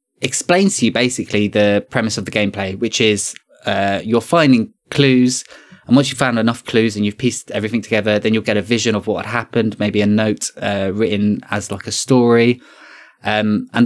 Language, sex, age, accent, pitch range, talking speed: English, male, 20-39, British, 105-130 Hz, 195 wpm